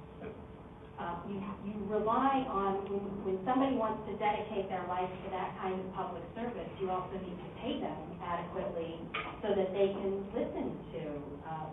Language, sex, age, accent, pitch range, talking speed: English, female, 40-59, American, 170-195 Hz, 165 wpm